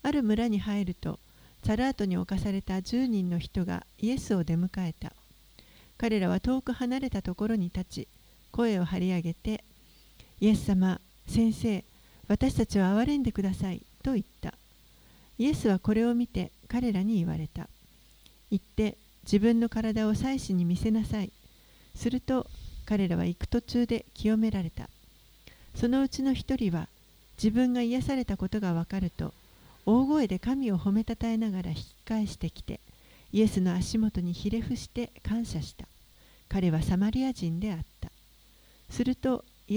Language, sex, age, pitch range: Japanese, female, 50-69, 185-235 Hz